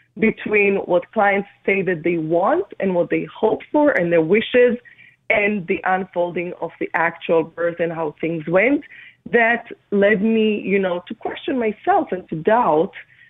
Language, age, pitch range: English, 30-49, 175-225 Hz